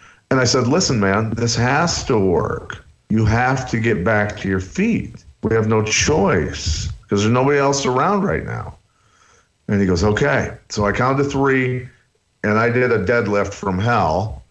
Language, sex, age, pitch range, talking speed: English, male, 50-69, 95-120 Hz, 180 wpm